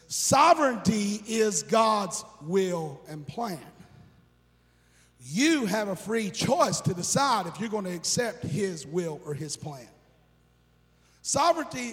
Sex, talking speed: male, 120 wpm